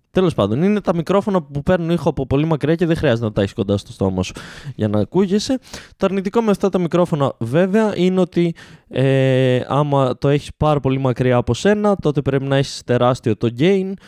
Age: 20-39